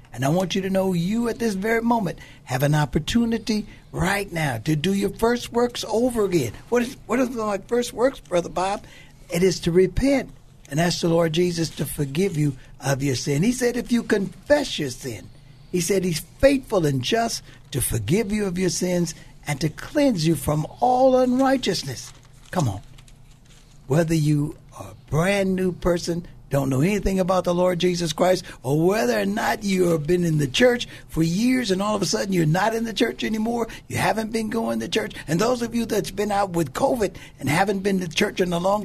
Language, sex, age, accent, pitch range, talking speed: English, male, 60-79, American, 140-215 Hz, 210 wpm